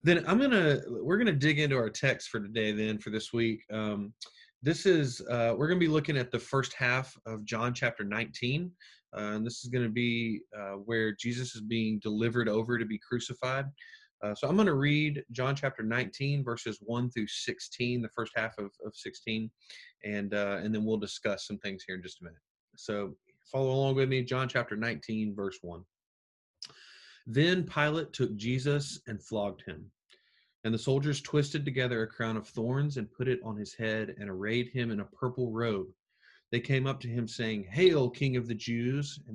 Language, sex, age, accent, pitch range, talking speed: English, male, 30-49, American, 110-135 Hz, 205 wpm